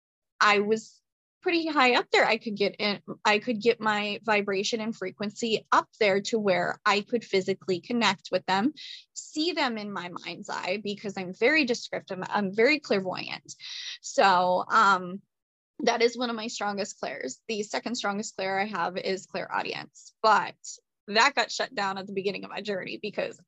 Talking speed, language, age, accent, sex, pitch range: 180 wpm, English, 20-39, American, female, 200-255 Hz